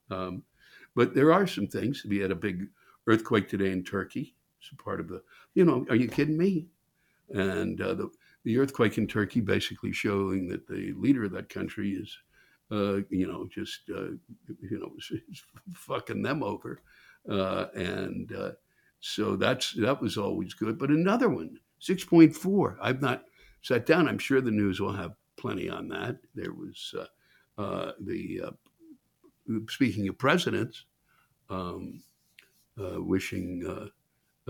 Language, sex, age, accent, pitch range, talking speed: English, male, 60-79, American, 95-135 Hz, 155 wpm